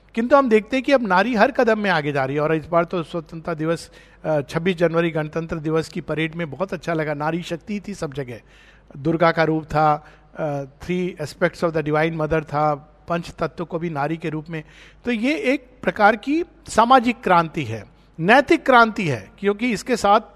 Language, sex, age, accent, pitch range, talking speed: Hindi, male, 50-69, native, 160-230 Hz, 200 wpm